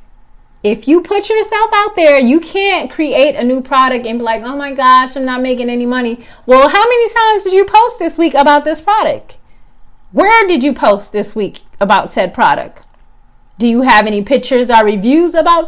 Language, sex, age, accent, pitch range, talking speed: English, female, 30-49, American, 220-325 Hz, 200 wpm